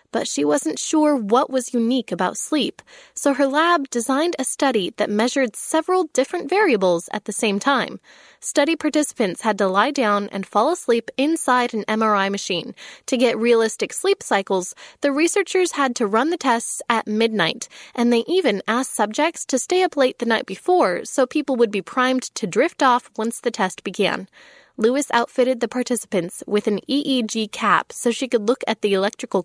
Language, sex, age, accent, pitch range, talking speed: English, female, 10-29, American, 215-285 Hz, 185 wpm